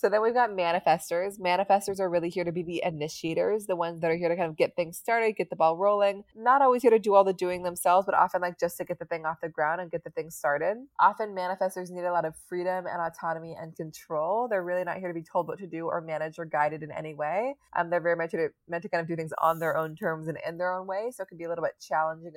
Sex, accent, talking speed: female, American, 290 wpm